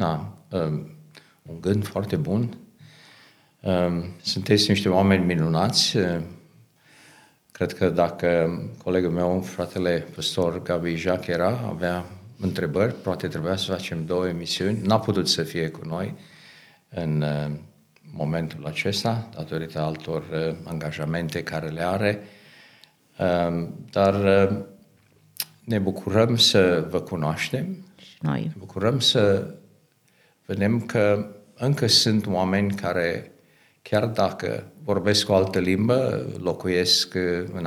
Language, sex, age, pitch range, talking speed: Romanian, male, 50-69, 85-105 Hz, 100 wpm